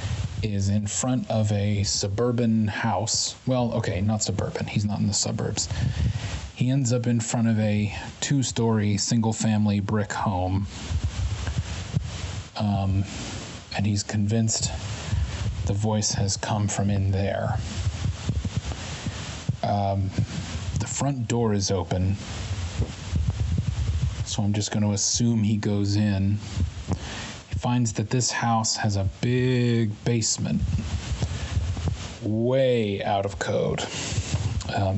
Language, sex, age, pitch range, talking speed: English, male, 30-49, 100-115 Hz, 110 wpm